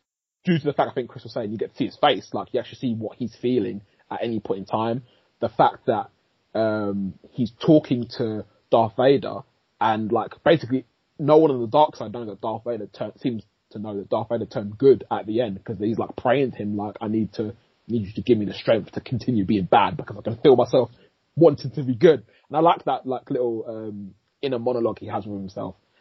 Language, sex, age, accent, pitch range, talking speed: English, male, 20-39, British, 105-150 Hz, 240 wpm